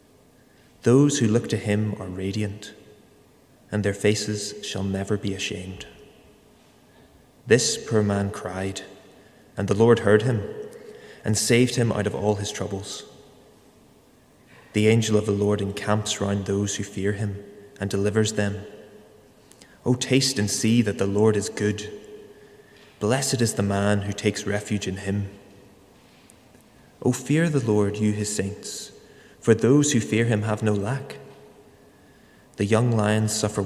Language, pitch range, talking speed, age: English, 100-115 Hz, 145 wpm, 20-39